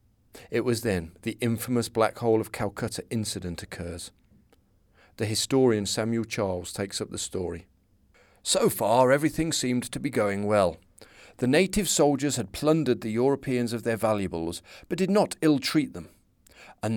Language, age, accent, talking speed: English, 40-59, British, 150 wpm